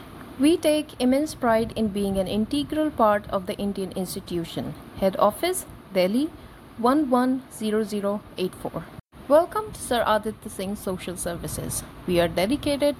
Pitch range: 185-265 Hz